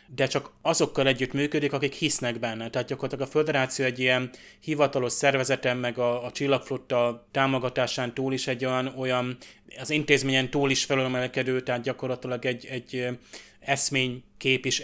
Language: Hungarian